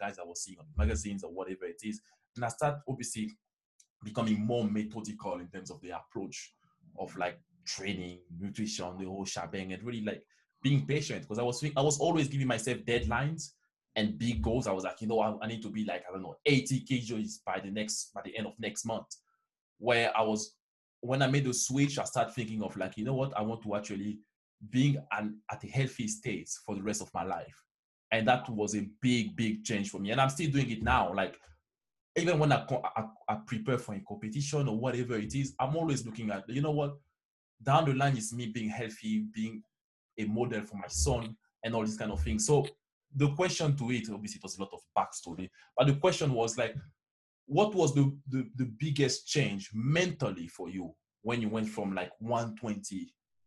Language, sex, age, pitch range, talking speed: English, male, 20-39, 105-135 Hz, 215 wpm